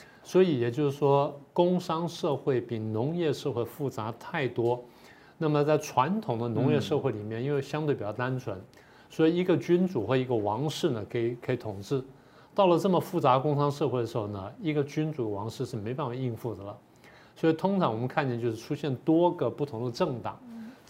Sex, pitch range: male, 120-155 Hz